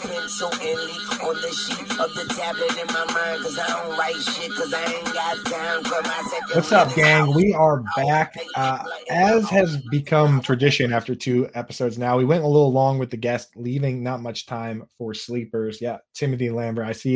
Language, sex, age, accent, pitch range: English, male, 20-39, American, 120-155 Hz